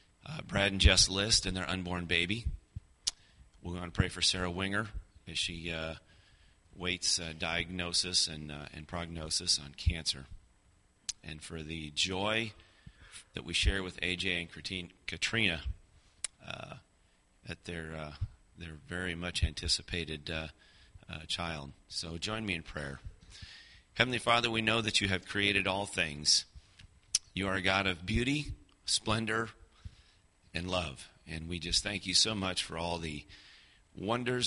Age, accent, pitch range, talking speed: 40-59, American, 80-100 Hz, 150 wpm